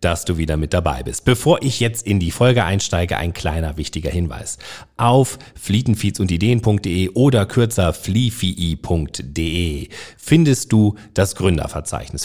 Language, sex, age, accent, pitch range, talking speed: German, male, 40-59, German, 85-115 Hz, 125 wpm